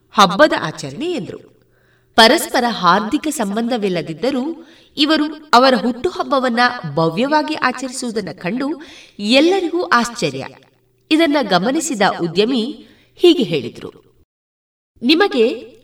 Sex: female